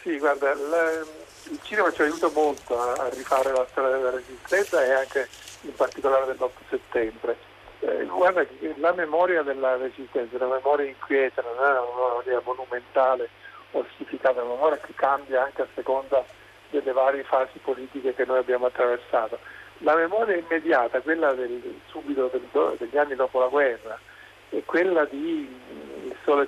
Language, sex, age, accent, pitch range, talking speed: Italian, male, 50-69, native, 130-165 Hz, 150 wpm